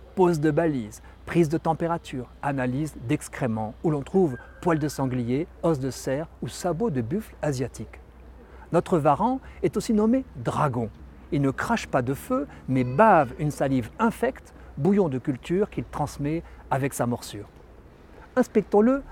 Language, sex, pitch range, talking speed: French, male, 125-180 Hz, 150 wpm